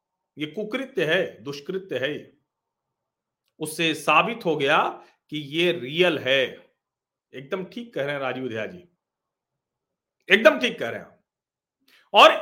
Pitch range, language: 140-220 Hz, Hindi